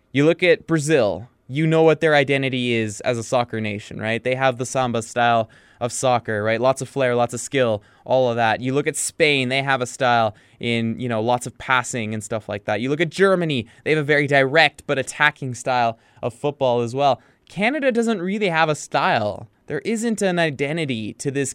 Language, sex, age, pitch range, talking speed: English, male, 20-39, 110-155 Hz, 215 wpm